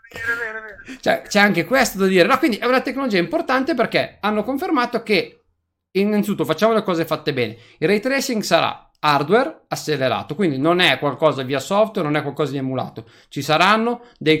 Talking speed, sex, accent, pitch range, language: 175 wpm, male, native, 150-210 Hz, Italian